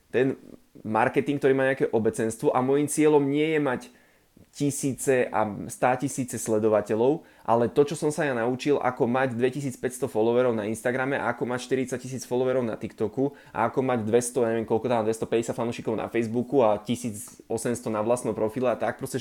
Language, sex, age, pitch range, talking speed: Slovak, male, 20-39, 120-145 Hz, 175 wpm